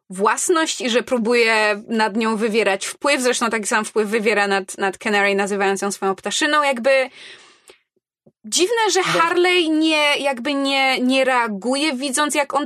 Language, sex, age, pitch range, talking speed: Polish, female, 20-39, 230-295 Hz, 150 wpm